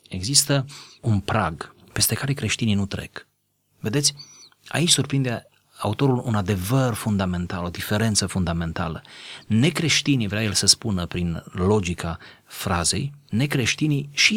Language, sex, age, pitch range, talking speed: Romanian, male, 30-49, 95-130 Hz, 115 wpm